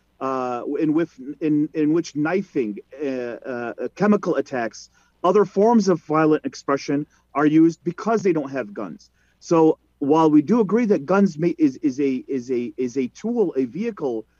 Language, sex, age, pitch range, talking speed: Arabic, male, 40-59, 150-195 Hz, 170 wpm